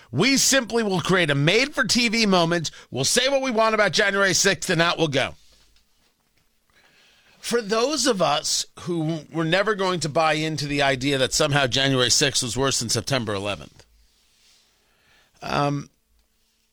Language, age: English, 40-59